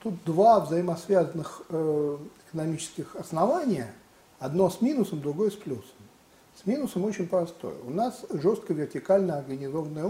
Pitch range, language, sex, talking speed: 155-205 Hz, Russian, male, 120 wpm